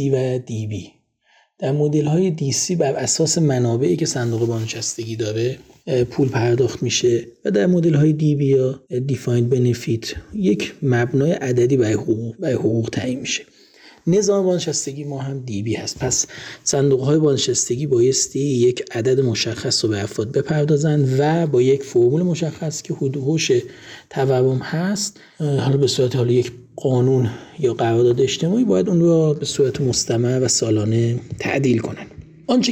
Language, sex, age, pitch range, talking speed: Persian, male, 40-59, 120-155 Hz, 150 wpm